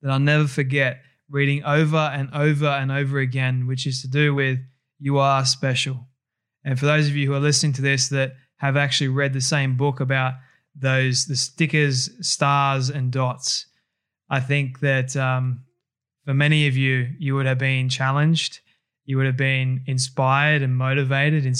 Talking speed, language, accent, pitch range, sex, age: 180 wpm, English, Australian, 130-145 Hz, male, 20-39